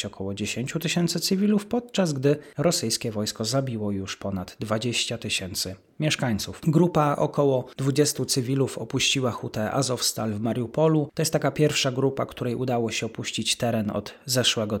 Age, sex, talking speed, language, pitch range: 30-49, male, 140 wpm, Polish, 110-145 Hz